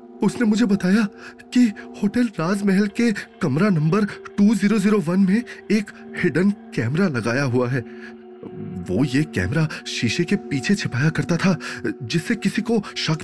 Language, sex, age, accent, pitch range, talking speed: Hindi, male, 30-49, native, 155-210 Hz, 145 wpm